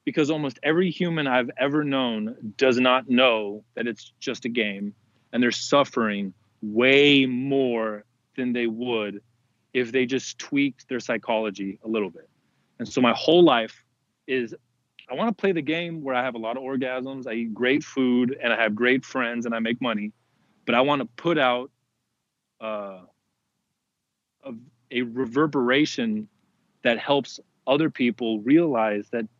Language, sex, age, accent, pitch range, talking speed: English, male, 30-49, American, 110-135 Hz, 165 wpm